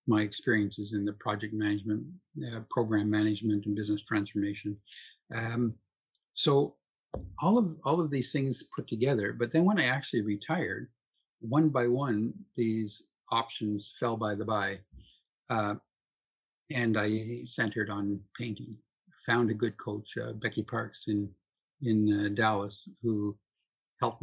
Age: 50-69